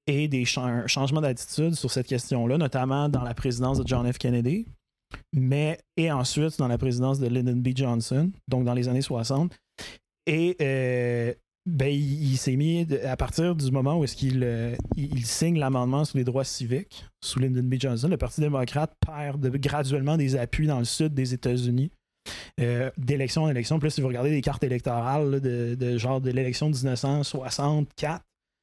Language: French